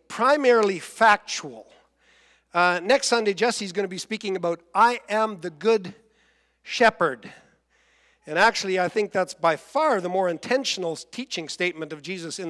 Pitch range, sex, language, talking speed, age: 180-225 Hz, male, English, 150 wpm, 50-69